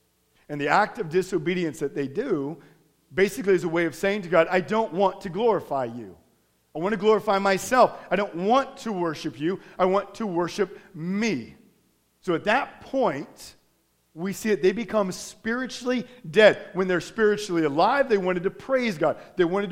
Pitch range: 150-200 Hz